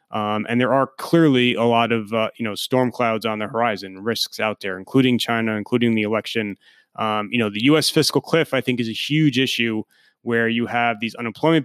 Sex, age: male, 30-49